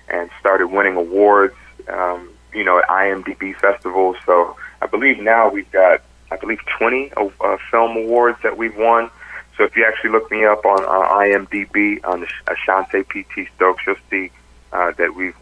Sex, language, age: male, English, 40-59